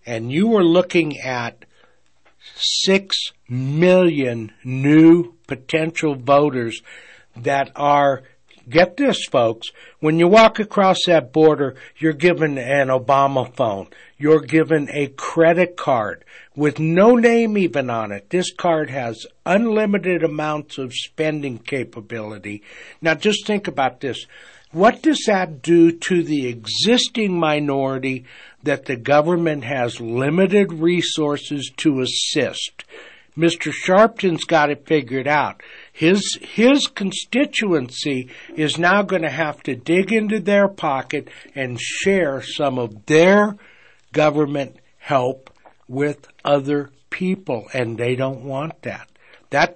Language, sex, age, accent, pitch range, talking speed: English, male, 60-79, American, 135-180 Hz, 125 wpm